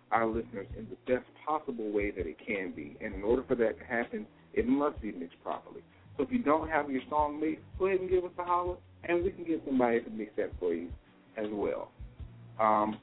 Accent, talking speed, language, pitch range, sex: American, 235 wpm, English, 110-175 Hz, male